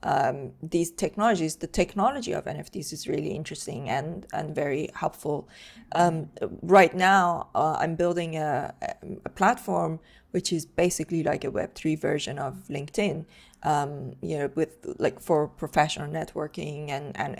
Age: 20-39